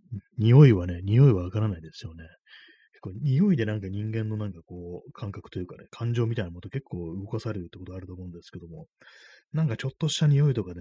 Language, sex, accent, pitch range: Japanese, male, native, 95-120 Hz